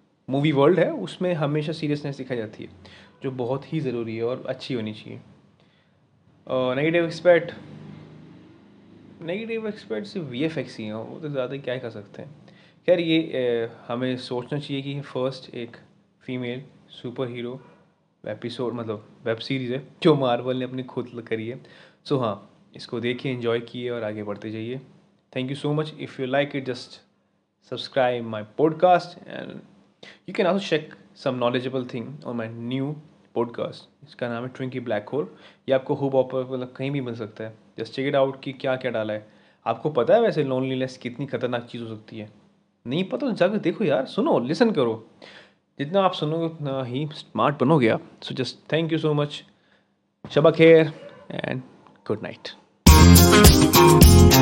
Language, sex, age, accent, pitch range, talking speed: Hindi, male, 20-39, native, 115-150 Hz, 160 wpm